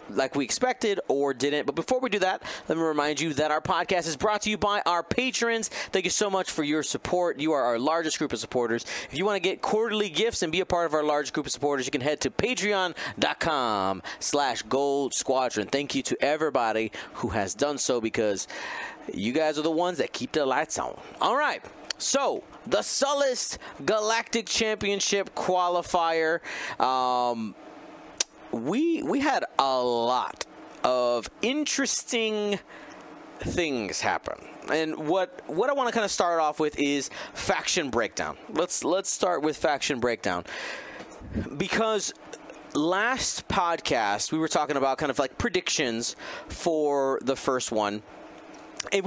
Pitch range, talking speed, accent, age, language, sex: 135-200 Hz, 165 wpm, American, 30-49, English, male